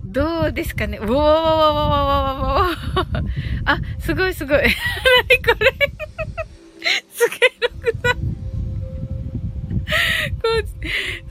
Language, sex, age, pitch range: Japanese, female, 20-39, 305-435 Hz